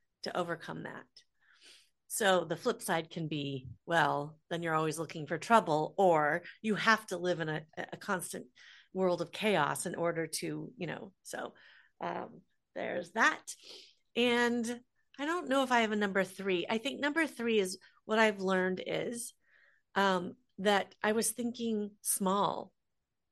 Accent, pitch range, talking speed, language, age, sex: American, 175-220 Hz, 160 wpm, English, 40-59, female